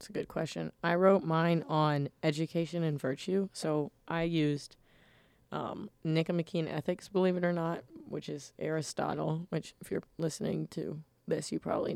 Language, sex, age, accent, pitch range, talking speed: English, female, 20-39, American, 155-170 Hz, 160 wpm